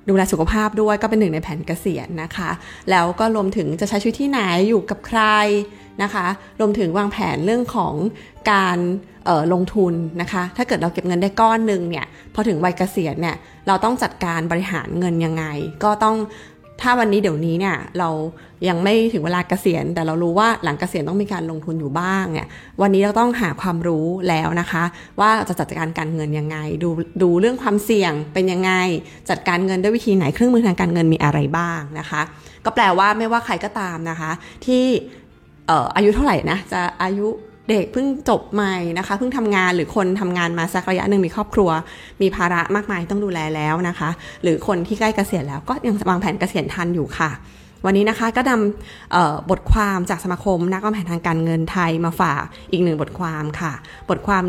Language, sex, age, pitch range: Thai, female, 20-39, 165-205 Hz